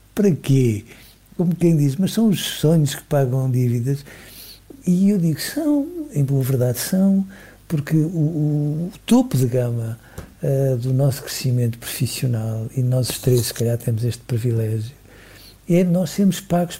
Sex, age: male, 60-79